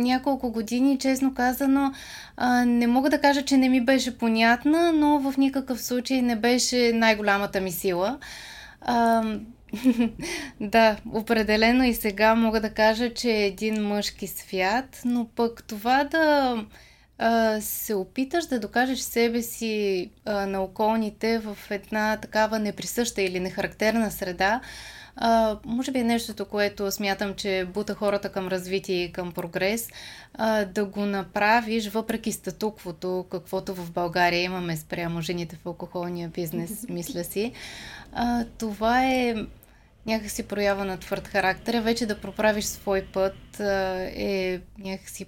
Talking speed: 135 wpm